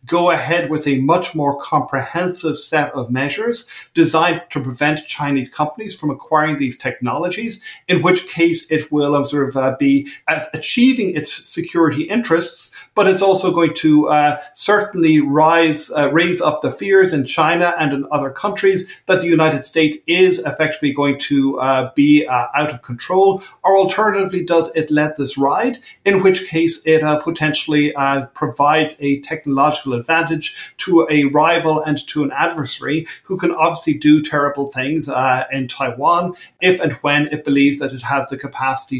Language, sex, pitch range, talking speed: English, male, 140-170 Hz, 165 wpm